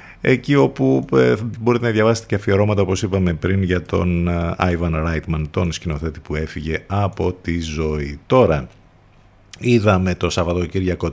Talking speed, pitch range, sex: 135 wpm, 85-110 Hz, male